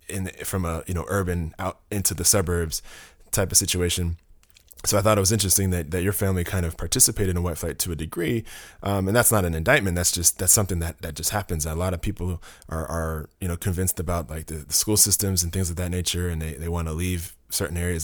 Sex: male